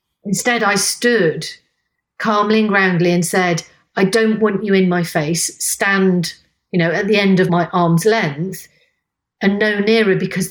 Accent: British